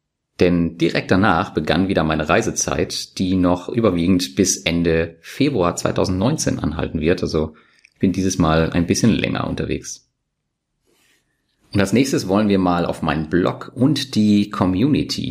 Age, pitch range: 30-49, 80-95 Hz